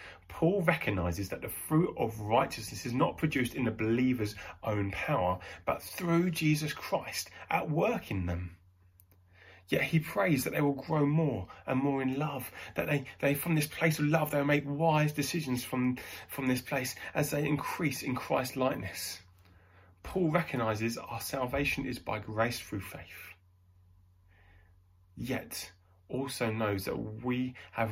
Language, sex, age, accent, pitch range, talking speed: English, male, 30-49, British, 90-125 Hz, 155 wpm